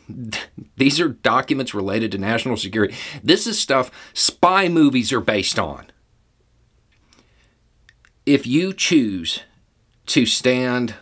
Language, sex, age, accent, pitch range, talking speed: English, male, 40-59, American, 100-125 Hz, 110 wpm